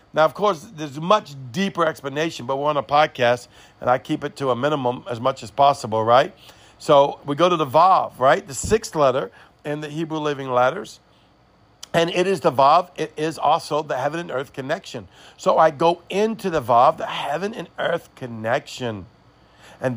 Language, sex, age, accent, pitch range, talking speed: English, male, 50-69, American, 135-170 Hz, 195 wpm